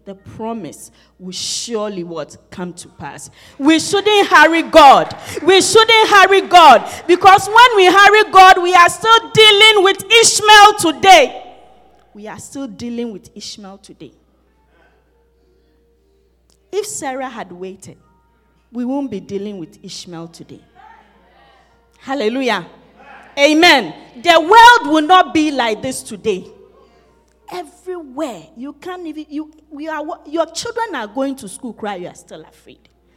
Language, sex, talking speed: English, female, 135 wpm